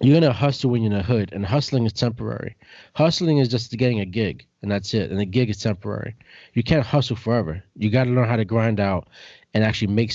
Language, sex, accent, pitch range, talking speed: English, male, American, 105-125 Hz, 250 wpm